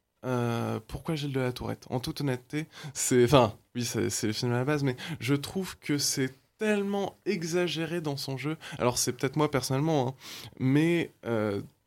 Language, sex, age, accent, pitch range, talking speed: French, male, 20-39, French, 120-155 Hz, 190 wpm